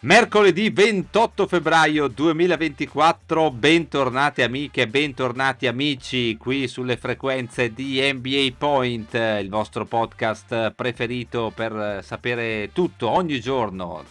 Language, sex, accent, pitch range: Italian, male, native, 105-135 Hz